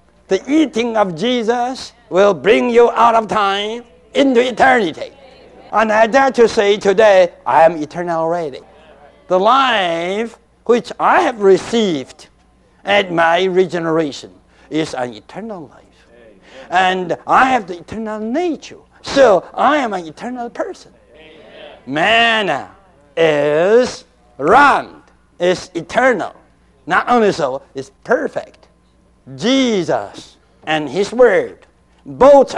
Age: 60-79